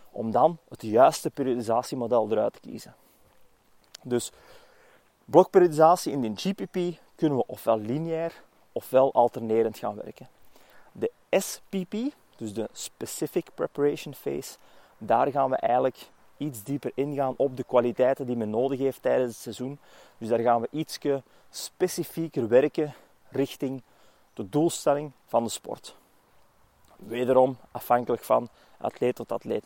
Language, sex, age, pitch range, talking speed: English, male, 30-49, 120-145 Hz, 130 wpm